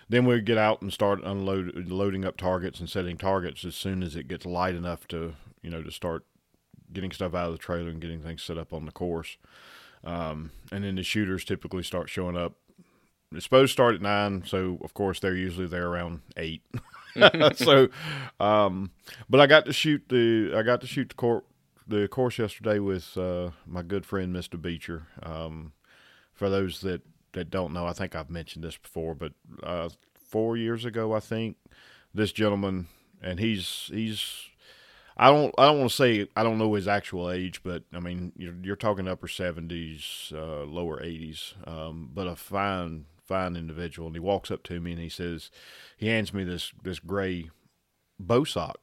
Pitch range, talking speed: 85-100 Hz, 195 wpm